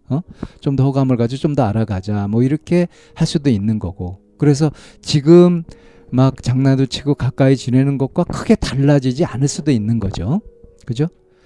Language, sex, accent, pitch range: Korean, male, native, 110-155 Hz